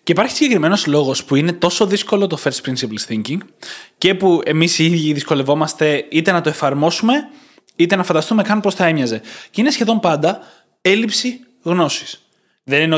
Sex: male